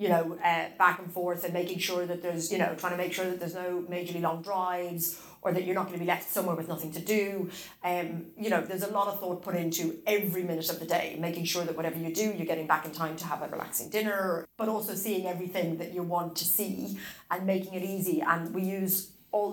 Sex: female